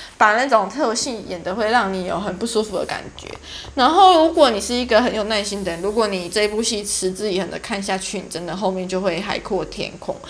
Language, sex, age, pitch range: Chinese, female, 20-39, 195-260 Hz